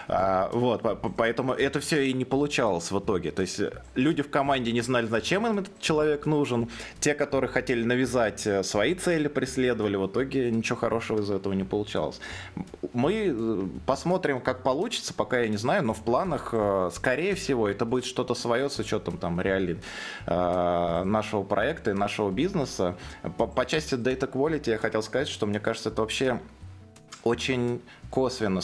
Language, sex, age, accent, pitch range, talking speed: Russian, male, 20-39, native, 100-130 Hz, 160 wpm